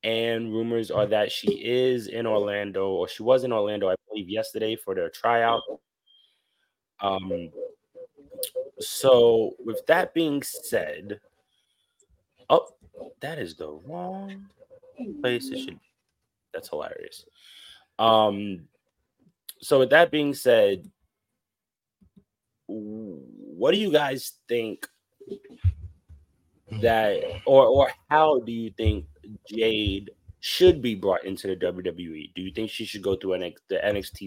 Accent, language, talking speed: American, English, 125 wpm